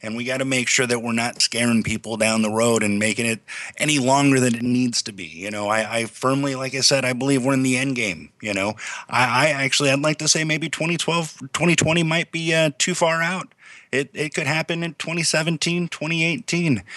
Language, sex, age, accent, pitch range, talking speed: English, male, 30-49, American, 110-140 Hz, 225 wpm